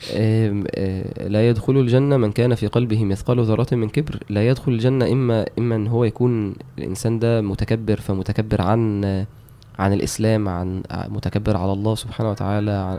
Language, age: Arabic, 20-39